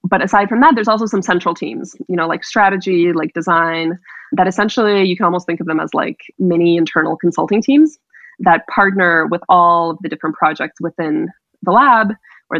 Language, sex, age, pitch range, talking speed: English, female, 20-39, 165-200 Hz, 195 wpm